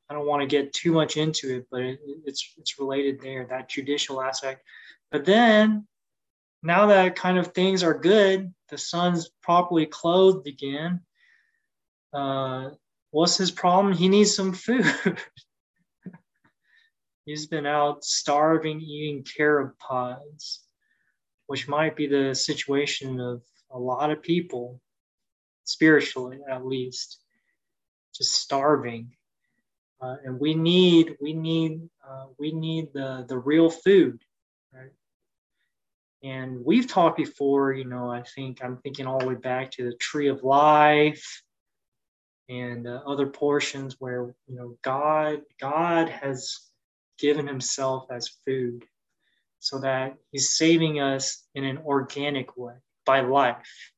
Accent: American